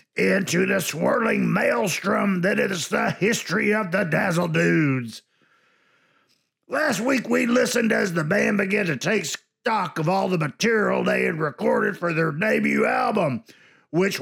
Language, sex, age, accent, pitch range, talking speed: English, male, 50-69, American, 165-215 Hz, 150 wpm